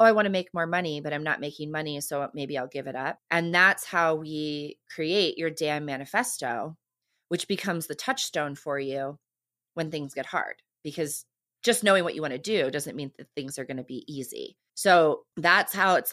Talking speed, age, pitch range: 210 wpm, 30-49, 150-185 Hz